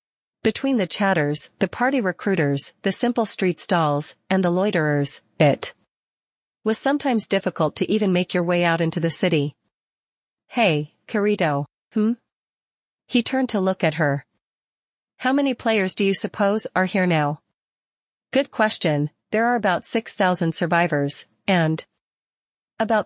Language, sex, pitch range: English, female, 165-210 Hz